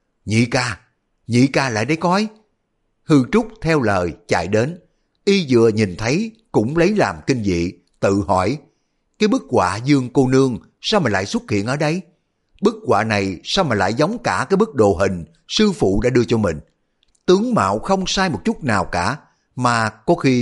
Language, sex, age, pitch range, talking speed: Vietnamese, male, 60-79, 105-155 Hz, 195 wpm